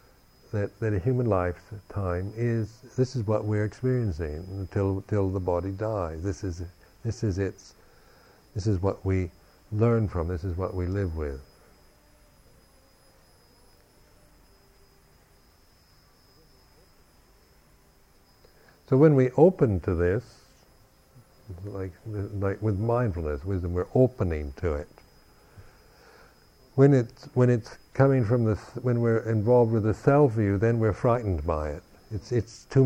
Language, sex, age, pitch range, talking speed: English, male, 60-79, 90-115 Hz, 125 wpm